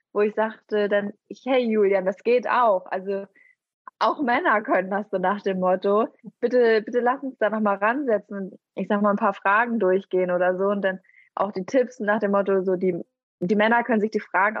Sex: female